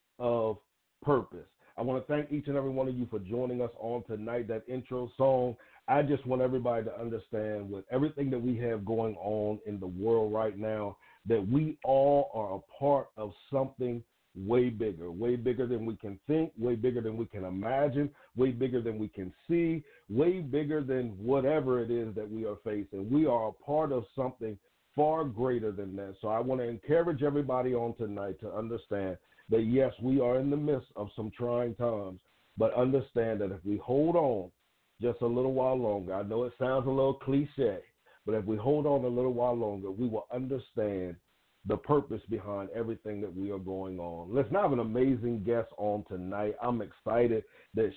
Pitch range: 105-130 Hz